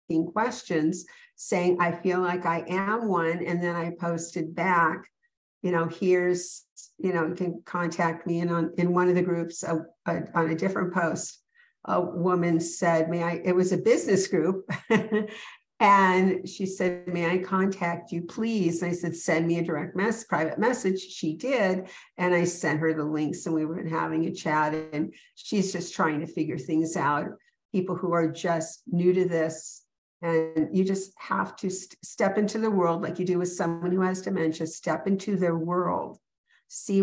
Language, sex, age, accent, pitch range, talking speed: English, female, 50-69, American, 165-190 Hz, 185 wpm